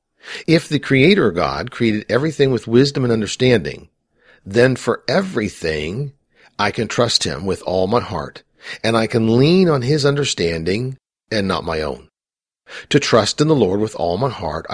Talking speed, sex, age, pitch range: 165 wpm, male, 50-69, 105-145 Hz